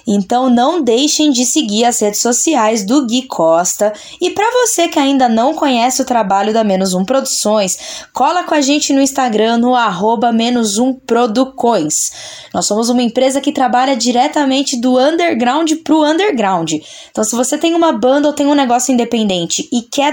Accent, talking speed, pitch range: Brazilian, 165 wpm, 210-285 Hz